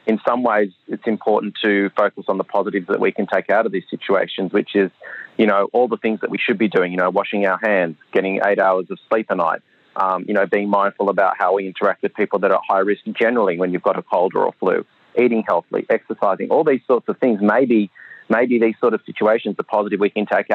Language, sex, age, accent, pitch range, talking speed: English, male, 30-49, Australian, 100-115 Hz, 250 wpm